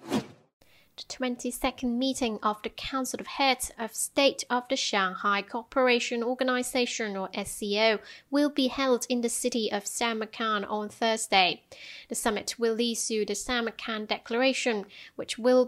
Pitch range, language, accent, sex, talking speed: 215-265 Hz, English, British, female, 140 wpm